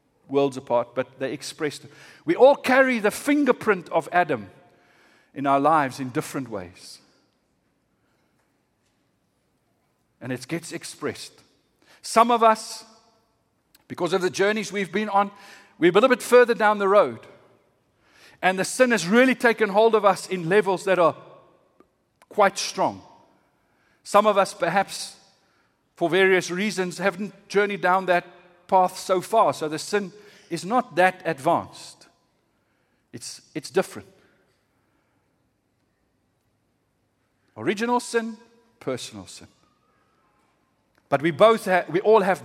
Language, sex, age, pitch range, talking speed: English, male, 50-69, 165-225 Hz, 125 wpm